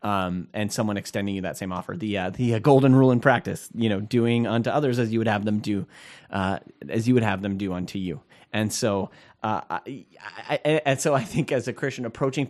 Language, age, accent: English, 30-49, American